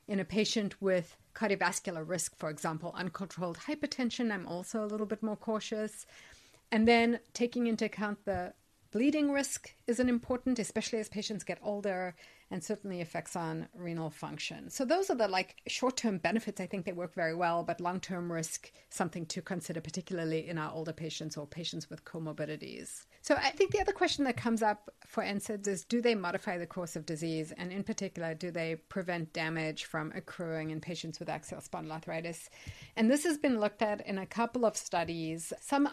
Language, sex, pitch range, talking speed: English, female, 170-220 Hz, 185 wpm